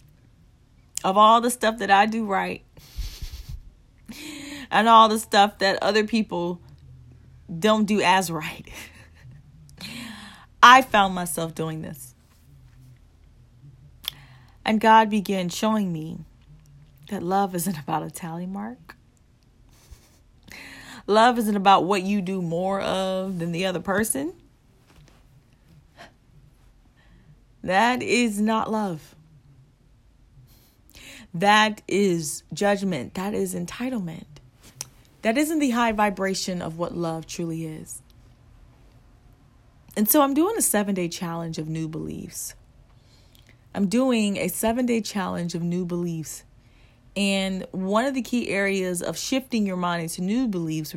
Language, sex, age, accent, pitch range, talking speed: English, female, 30-49, American, 160-215 Hz, 115 wpm